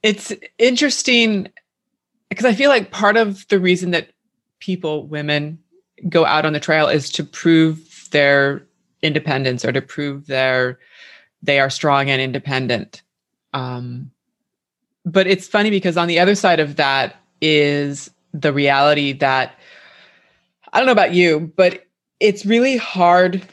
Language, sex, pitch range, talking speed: English, female, 145-190 Hz, 145 wpm